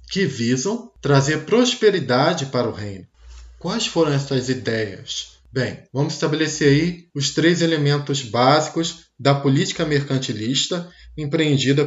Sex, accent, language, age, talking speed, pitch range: male, Brazilian, Portuguese, 20-39, 115 wpm, 130-170 Hz